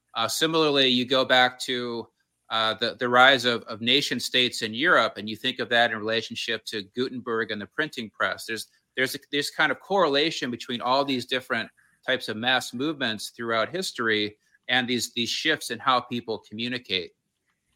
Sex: male